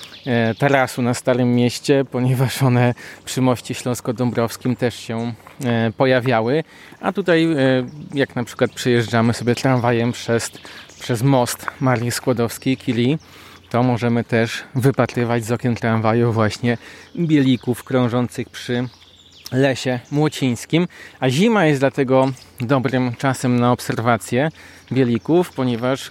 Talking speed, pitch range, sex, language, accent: 110 wpm, 115-135 Hz, male, Polish, native